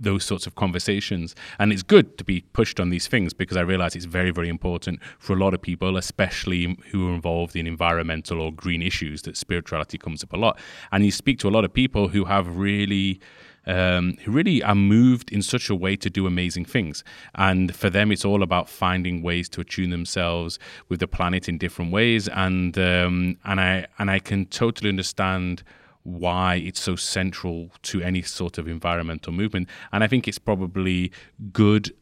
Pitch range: 90-100 Hz